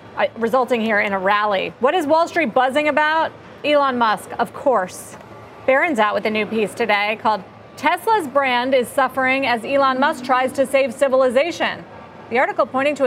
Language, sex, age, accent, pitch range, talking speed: English, female, 40-59, American, 215-280 Hz, 180 wpm